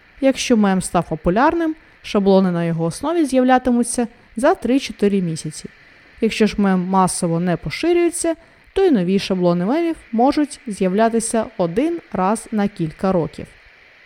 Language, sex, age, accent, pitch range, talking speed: Ukrainian, female, 20-39, native, 190-270 Hz, 130 wpm